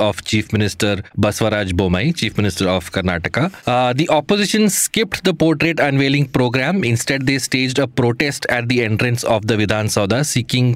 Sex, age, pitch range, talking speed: male, 20-39, 110-145 Hz, 160 wpm